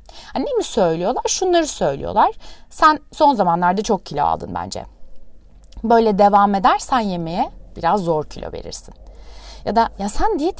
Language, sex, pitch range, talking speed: Turkish, female, 205-275 Hz, 140 wpm